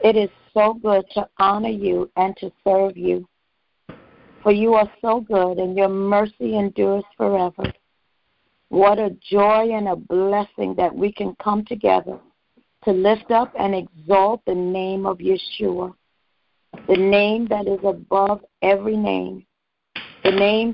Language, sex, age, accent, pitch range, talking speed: English, female, 60-79, American, 190-220 Hz, 145 wpm